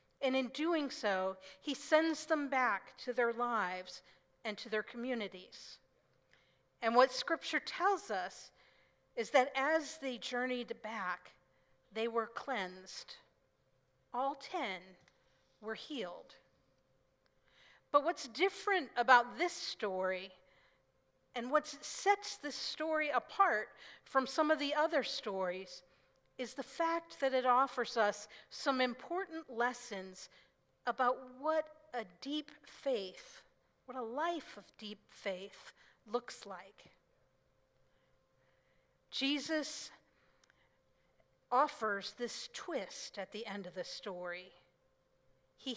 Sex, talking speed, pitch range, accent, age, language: female, 110 wpm, 190-290 Hz, American, 50-69, English